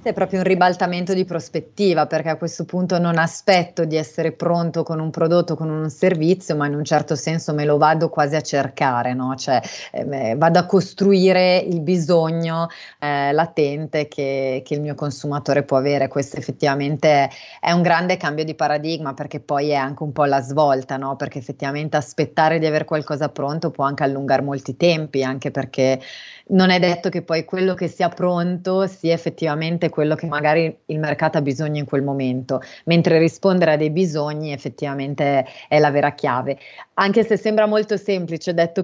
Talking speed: 180 wpm